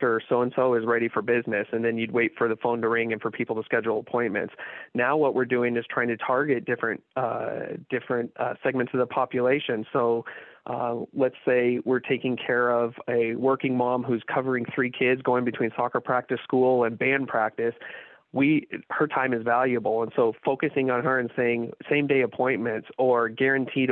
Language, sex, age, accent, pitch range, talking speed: English, male, 30-49, American, 110-125 Hz, 190 wpm